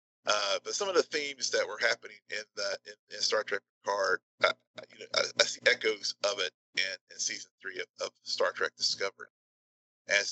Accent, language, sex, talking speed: American, English, male, 205 wpm